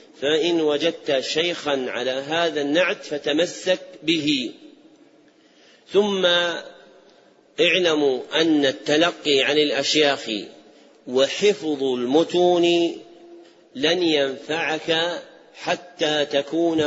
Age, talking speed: 40-59, 70 wpm